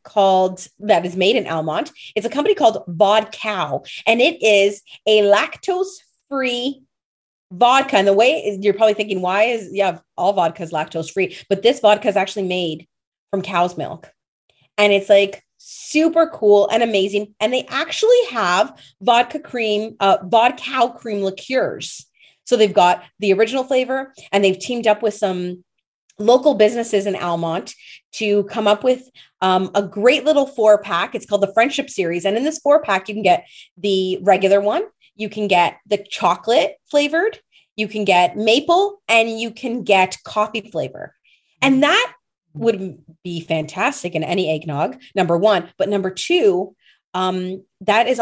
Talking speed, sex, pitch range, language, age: 165 wpm, female, 190-240 Hz, English, 30-49